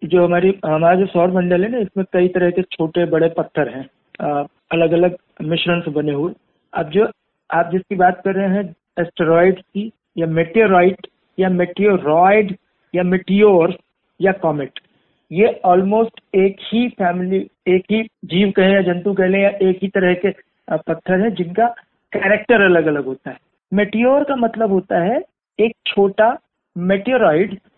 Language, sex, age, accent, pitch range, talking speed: Hindi, male, 50-69, native, 170-205 Hz, 160 wpm